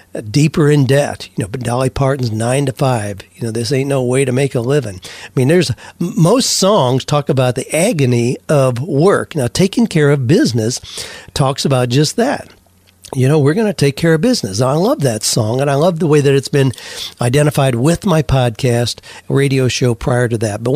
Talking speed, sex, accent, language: 205 wpm, male, American, English